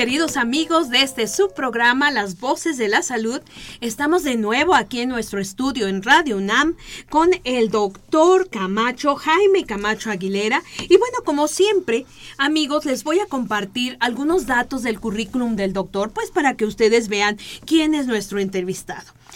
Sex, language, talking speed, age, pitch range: female, Spanish, 160 wpm, 40-59, 210-285 Hz